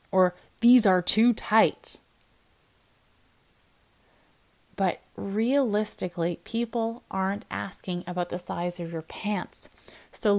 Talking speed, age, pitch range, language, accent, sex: 100 wpm, 20-39, 180-225 Hz, English, American, female